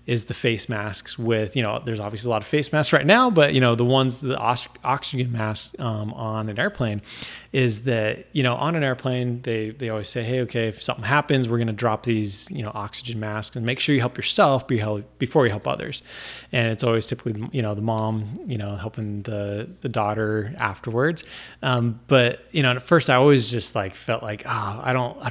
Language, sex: English, male